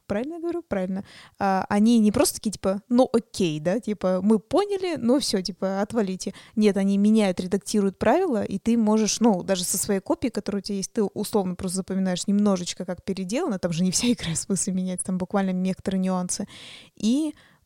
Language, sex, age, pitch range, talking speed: Russian, female, 20-39, 195-225 Hz, 195 wpm